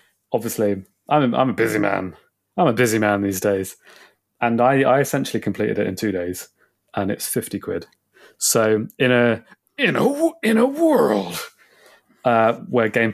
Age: 30-49